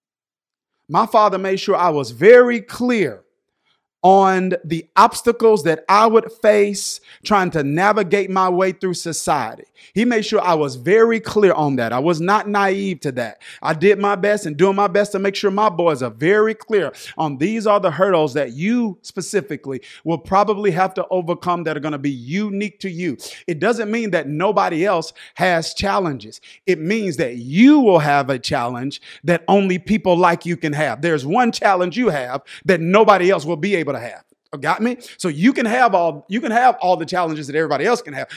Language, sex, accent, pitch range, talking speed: English, male, American, 160-215 Hz, 200 wpm